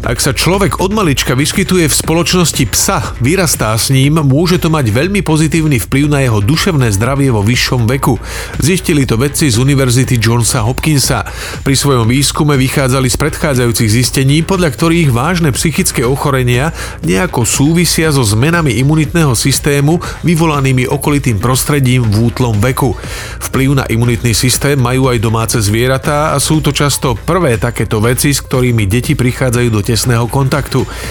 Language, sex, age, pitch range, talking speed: Slovak, male, 40-59, 120-150 Hz, 140 wpm